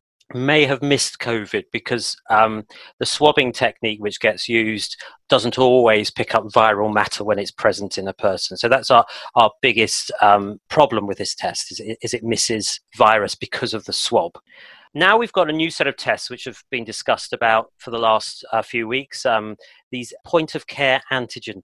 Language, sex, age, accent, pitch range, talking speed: English, male, 40-59, British, 110-135 Hz, 190 wpm